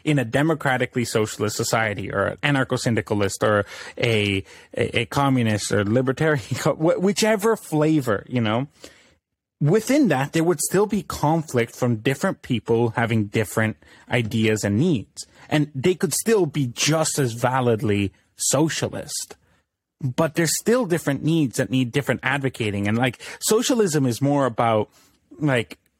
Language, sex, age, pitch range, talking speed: English, male, 30-49, 115-155 Hz, 130 wpm